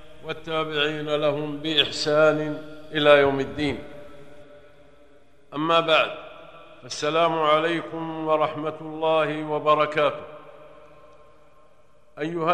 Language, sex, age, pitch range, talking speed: Arabic, male, 50-69, 155-165 Hz, 65 wpm